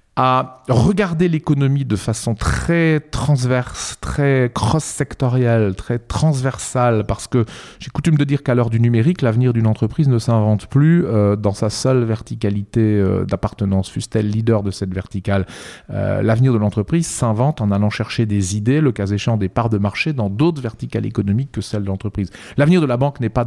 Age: 40-59